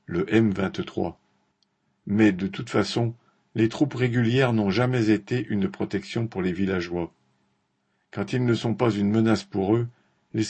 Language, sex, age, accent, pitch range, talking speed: French, male, 50-69, French, 100-120 Hz, 155 wpm